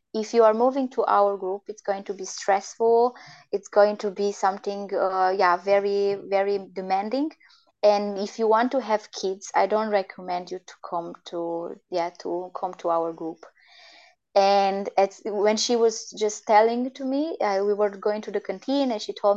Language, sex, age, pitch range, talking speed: English, female, 20-39, 200-245 Hz, 185 wpm